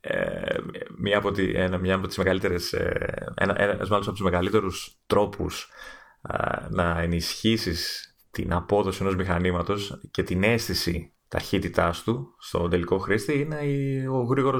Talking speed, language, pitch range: 115 wpm, Greek, 90-105 Hz